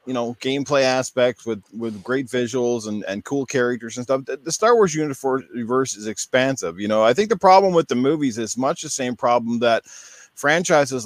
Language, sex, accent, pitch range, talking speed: English, male, American, 125-150 Hz, 200 wpm